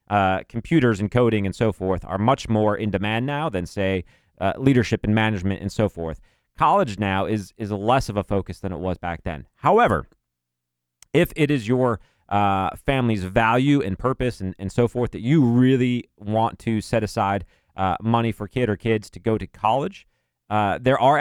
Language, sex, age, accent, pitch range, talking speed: English, male, 30-49, American, 95-120 Hz, 195 wpm